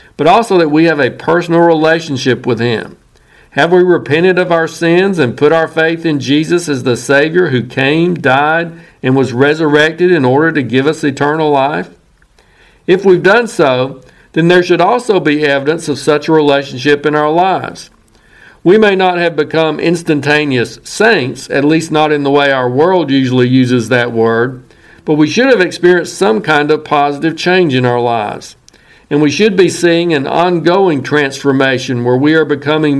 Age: 50-69